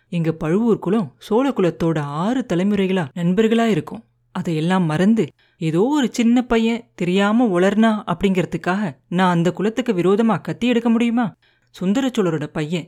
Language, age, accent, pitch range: Tamil, 30-49, native, 170-225 Hz